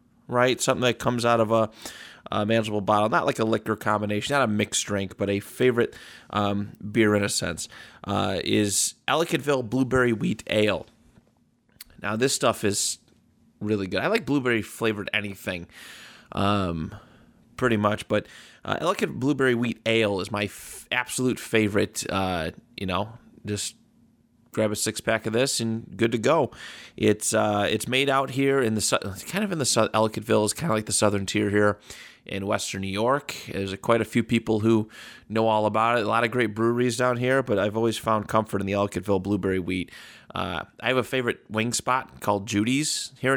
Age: 30-49